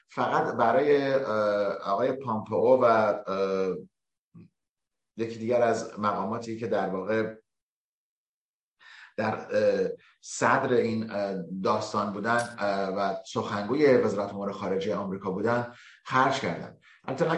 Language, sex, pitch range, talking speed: Persian, male, 100-125 Hz, 95 wpm